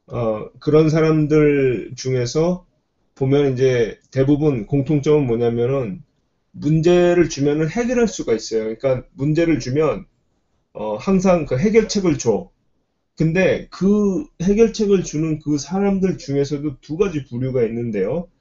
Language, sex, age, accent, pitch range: Korean, male, 30-49, native, 130-175 Hz